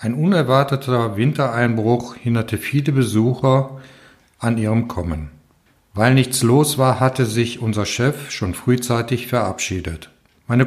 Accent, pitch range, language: German, 115-140 Hz, German